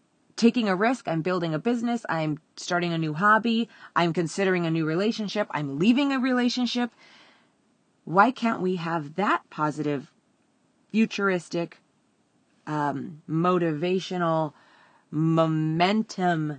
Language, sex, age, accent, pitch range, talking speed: English, female, 30-49, American, 165-225 Hz, 110 wpm